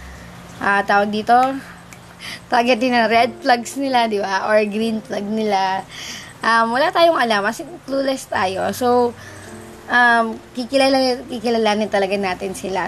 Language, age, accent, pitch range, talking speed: Filipino, 20-39, native, 205-260 Hz, 145 wpm